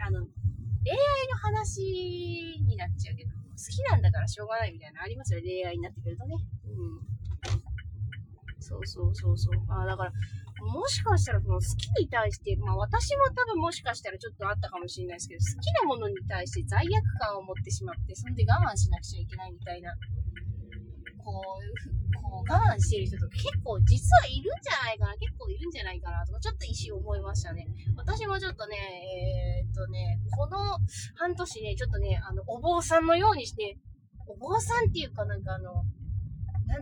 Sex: female